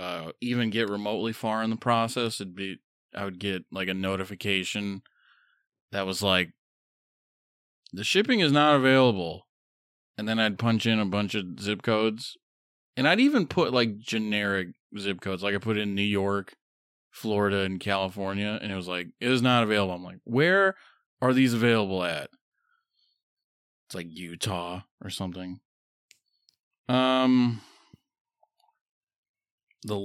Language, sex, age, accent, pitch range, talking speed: English, male, 20-39, American, 95-125 Hz, 150 wpm